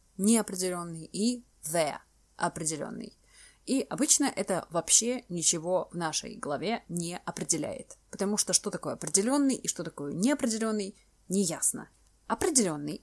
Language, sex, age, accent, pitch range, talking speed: Russian, female, 20-39, native, 160-230 Hz, 115 wpm